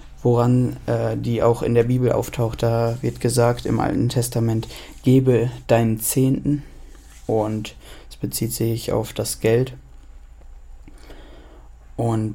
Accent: German